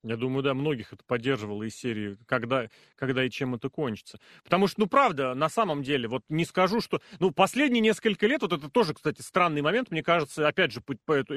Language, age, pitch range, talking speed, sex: Russian, 30-49, 140-215 Hz, 215 wpm, male